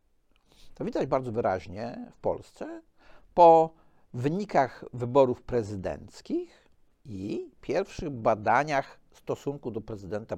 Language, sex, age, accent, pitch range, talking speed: Polish, male, 50-69, native, 110-180 Hz, 95 wpm